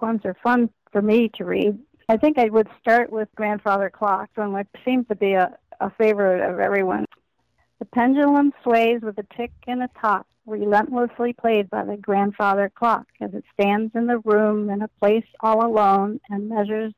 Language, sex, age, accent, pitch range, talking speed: English, female, 50-69, American, 205-230 Hz, 185 wpm